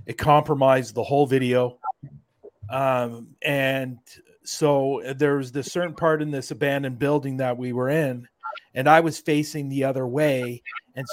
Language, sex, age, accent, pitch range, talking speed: English, male, 40-59, American, 135-155 Hz, 155 wpm